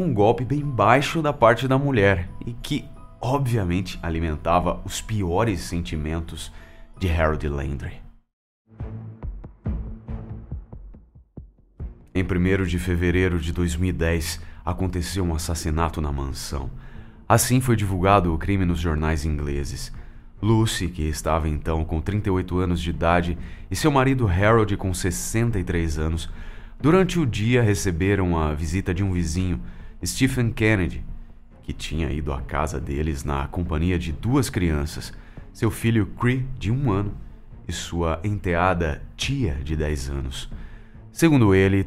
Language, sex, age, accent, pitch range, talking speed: Portuguese, male, 30-49, Brazilian, 80-110 Hz, 130 wpm